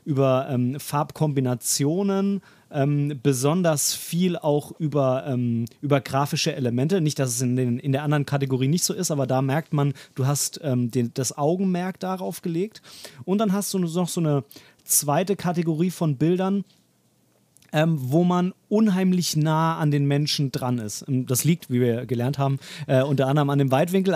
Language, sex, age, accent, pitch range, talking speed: German, male, 30-49, German, 135-175 Hz, 165 wpm